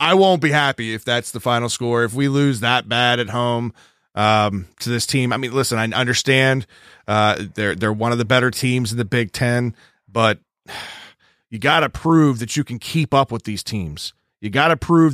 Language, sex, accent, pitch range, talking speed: English, male, American, 115-145 Hz, 215 wpm